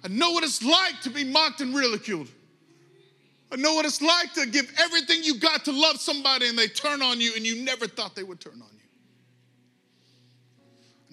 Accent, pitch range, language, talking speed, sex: American, 125-180 Hz, English, 205 wpm, male